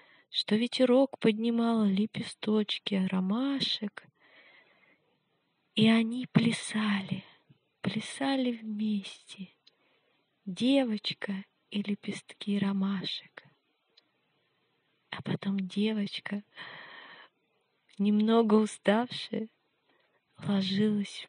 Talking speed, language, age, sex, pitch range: 55 wpm, French, 20-39, female, 195-220 Hz